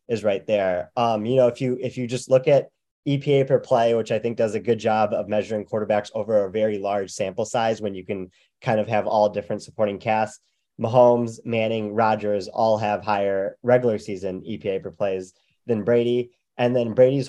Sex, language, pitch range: male, English, 105-120 Hz